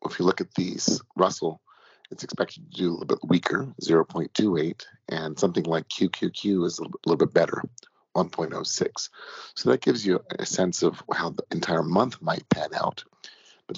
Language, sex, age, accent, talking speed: English, male, 40-59, American, 175 wpm